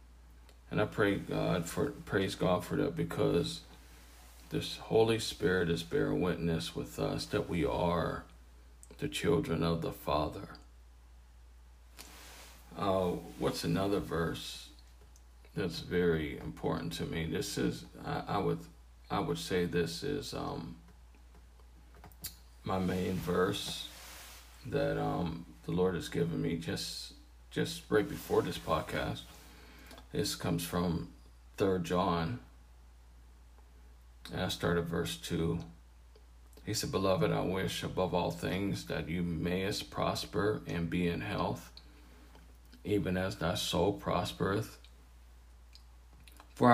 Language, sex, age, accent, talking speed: English, male, 40-59, American, 120 wpm